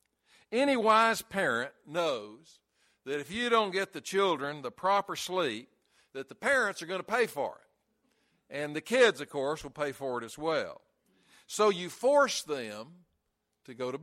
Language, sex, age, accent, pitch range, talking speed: English, male, 60-79, American, 145-200 Hz, 175 wpm